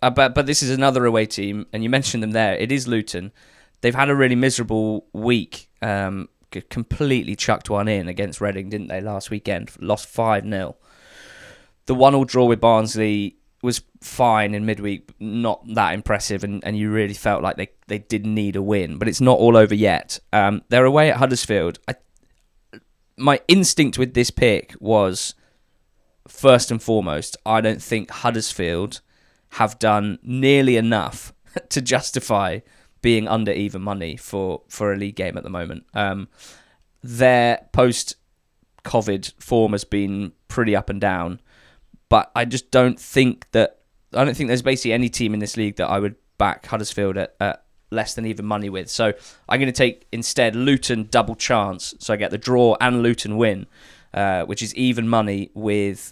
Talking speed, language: 175 wpm, English